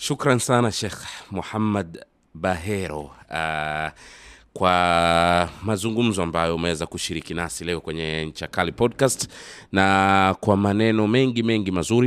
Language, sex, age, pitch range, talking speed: Swahili, male, 30-49, 85-110 Hz, 110 wpm